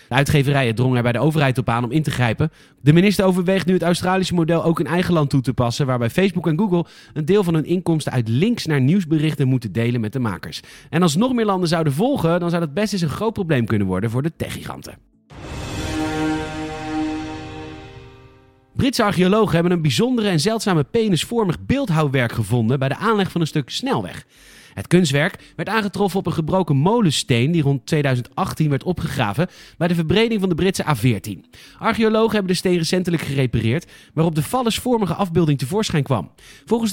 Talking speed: 185 wpm